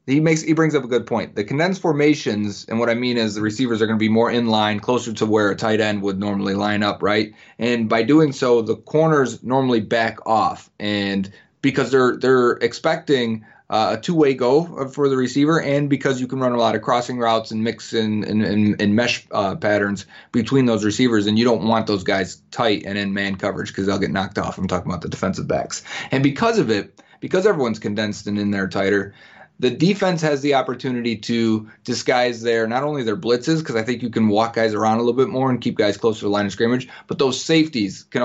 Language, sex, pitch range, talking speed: English, male, 105-130 Hz, 230 wpm